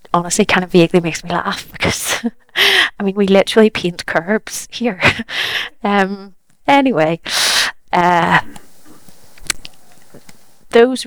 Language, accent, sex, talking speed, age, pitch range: English, British, female, 105 wpm, 20-39, 195-225 Hz